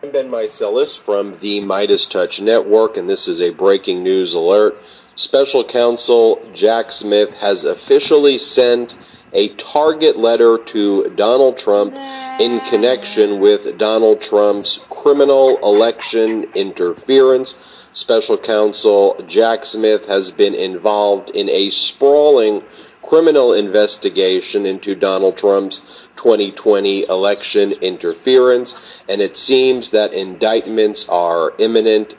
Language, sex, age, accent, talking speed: English, male, 40-59, American, 115 wpm